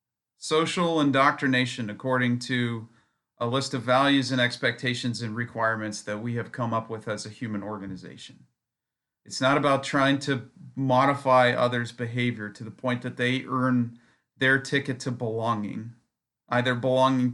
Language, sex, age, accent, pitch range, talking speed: English, male, 40-59, American, 115-135 Hz, 145 wpm